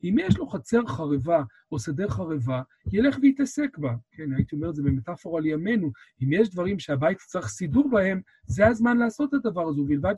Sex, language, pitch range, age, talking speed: male, Hebrew, 145-220 Hz, 40-59, 190 wpm